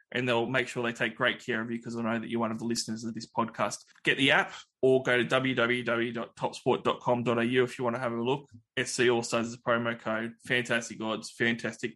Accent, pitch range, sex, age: Australian, 115-125 Hz, male, 20-39